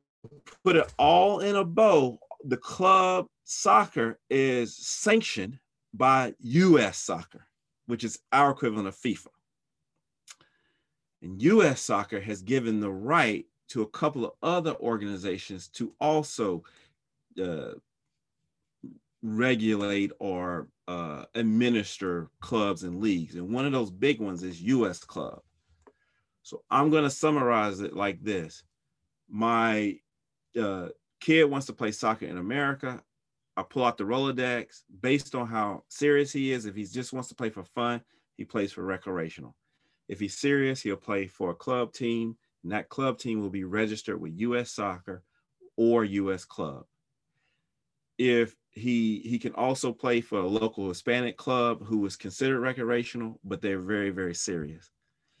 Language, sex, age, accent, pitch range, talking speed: English, male, 30-49, American, 100-130 Hz, 145 wpm